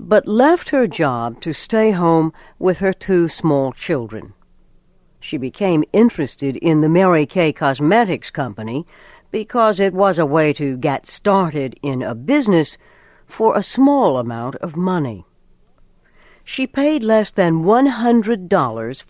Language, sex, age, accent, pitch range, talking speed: English, female, 60-79, American, 130-210 Hz, 135 wpm